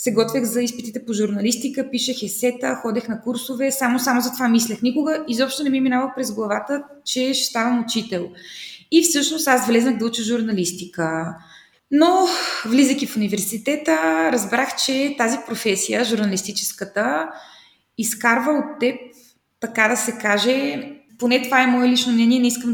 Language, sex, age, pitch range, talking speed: Bulgarian, female, 20-39, 220-265 Hz, 155 wpm